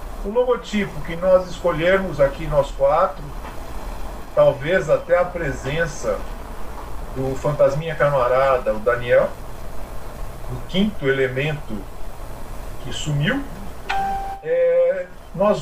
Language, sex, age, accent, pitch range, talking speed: Portuguese, male, 50-69, Brazilian, 145-210 Hz, 90 wpm